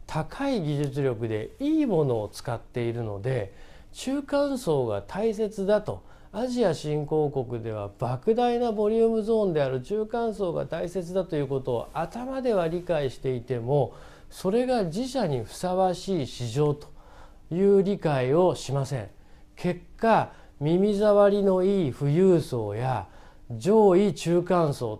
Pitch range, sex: 130-200 Hz, male